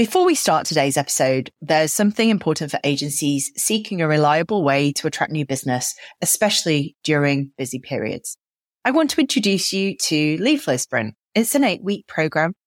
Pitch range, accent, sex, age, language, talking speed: 145-210 Hz, British, female, 30-49, English, 160 wpm